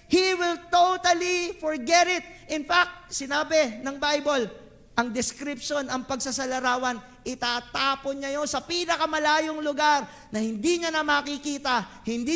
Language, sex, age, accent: English, male, 40-59, Filipino